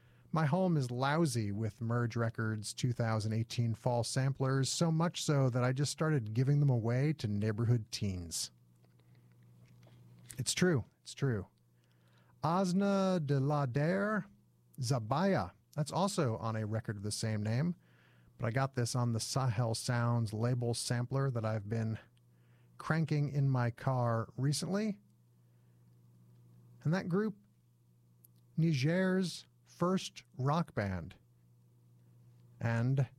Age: 40-59